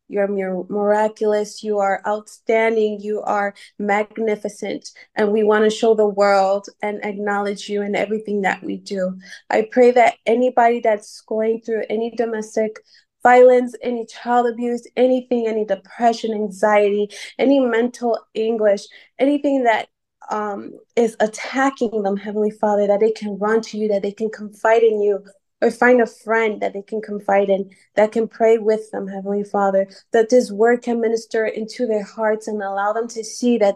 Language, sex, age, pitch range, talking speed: English, female, 20-39, 200-225 Hz, 165 wpm